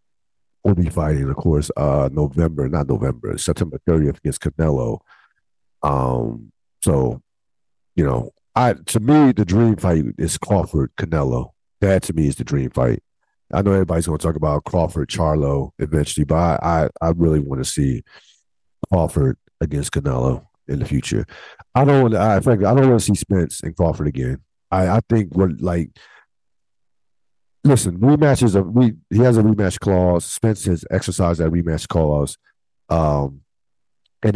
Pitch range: 75-100 Hz